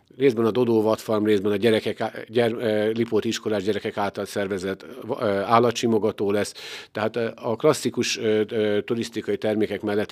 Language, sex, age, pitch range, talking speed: Hungarian, male, 50-69, 105-120 Hz, 125 wpm